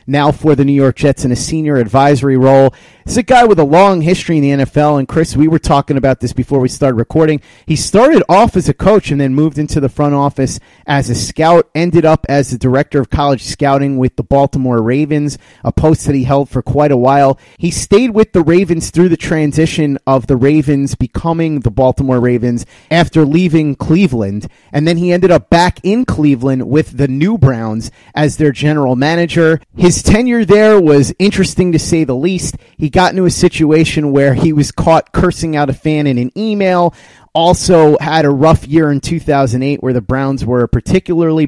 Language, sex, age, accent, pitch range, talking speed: English, male, 30-49, American, 135-165 Hz, 205 wpm